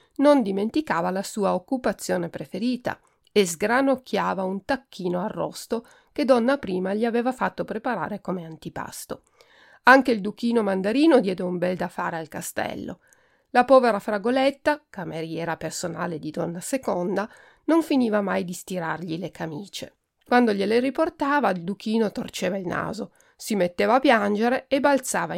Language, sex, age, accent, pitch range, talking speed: Italian, female, 40-59, native, 190-280 Hz, 140 wpm